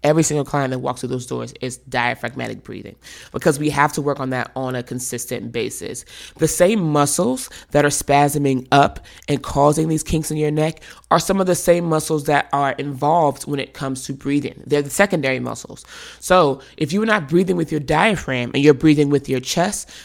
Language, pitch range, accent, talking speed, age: English, 140-170 Hz, American, 205 wpm, 20-39